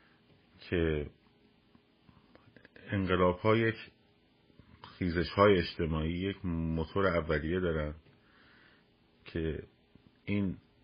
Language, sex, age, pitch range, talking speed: Persian, male, 50-69, 80-95 Hz, 60 wpm